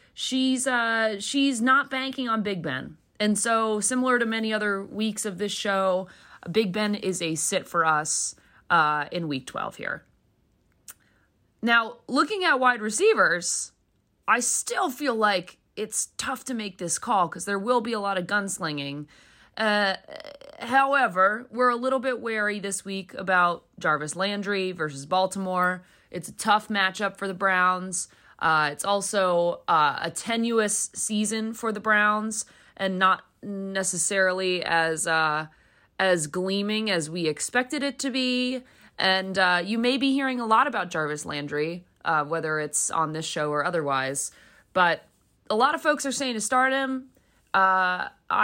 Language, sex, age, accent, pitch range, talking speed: English, female, 30-49, American, 180-240 Hz, 155 wpm